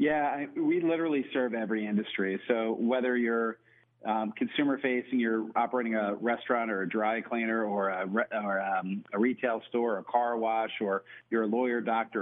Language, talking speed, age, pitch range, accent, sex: English, 180 wpm, 40-59, 110-125 Hz, American, male